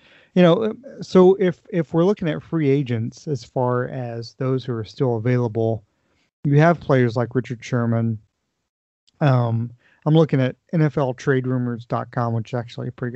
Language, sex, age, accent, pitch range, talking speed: English, male, 40-59, American, 125-155 Hz, 155 wpm